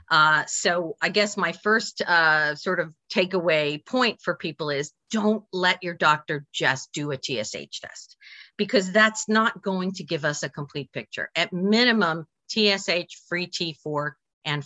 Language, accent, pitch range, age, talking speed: English, American, 150-200 Hz, 50-69, 160 wpm